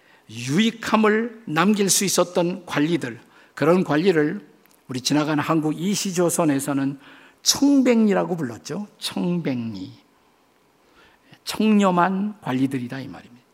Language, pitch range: Korean, 145-200 Hz